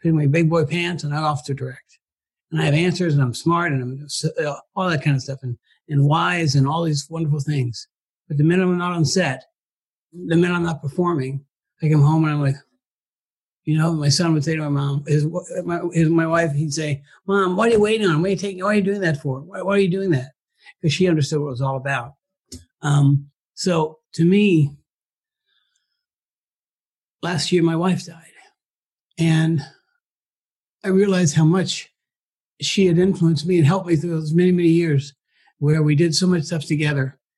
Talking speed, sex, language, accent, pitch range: 210 wpm, male, English, American, 145-170 Hz